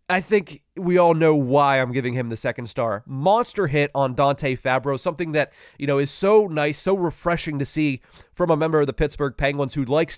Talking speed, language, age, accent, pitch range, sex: 220 wpm, English, 30-49, American, 130-160 Hz, male